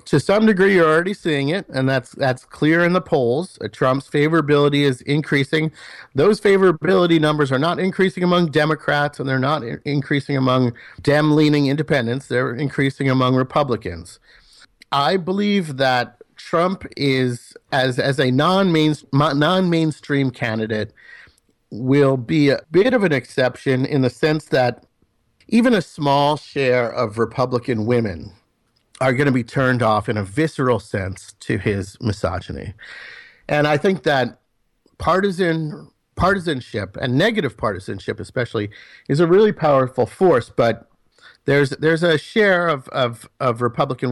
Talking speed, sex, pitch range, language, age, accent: 145 wpm, male, 120-155 Hz, English, 50-69, American